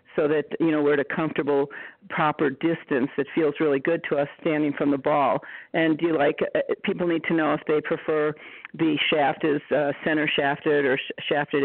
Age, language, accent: 50-69, English, American